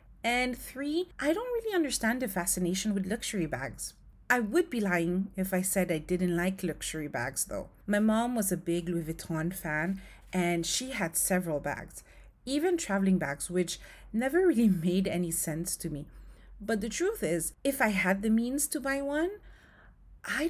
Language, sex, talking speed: English, female, 180 wpm